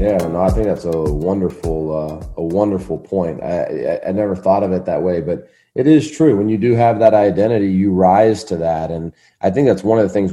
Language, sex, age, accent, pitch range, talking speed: English, male, 30-49, American, 80-95 Hz, 245 wpm